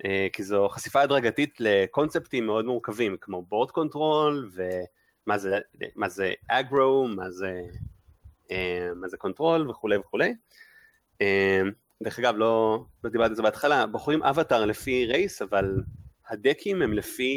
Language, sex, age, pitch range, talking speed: Hebrew, male, 30-49, 95-130 Hz, 130 wpm